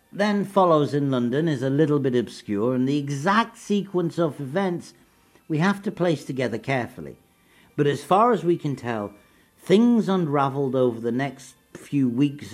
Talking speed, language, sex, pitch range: 165 wpm, English, male, 120-160 Hz